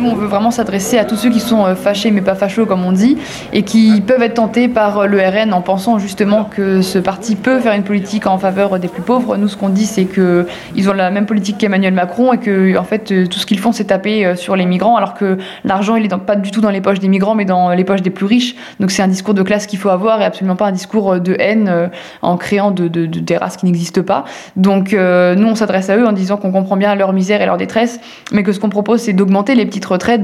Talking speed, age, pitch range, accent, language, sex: 270 wpm, 20-39, 190-220 Hz, French, French, female